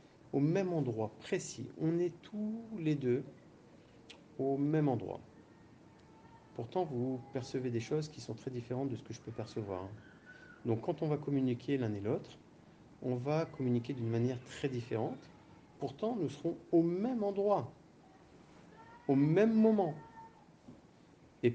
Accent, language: French, French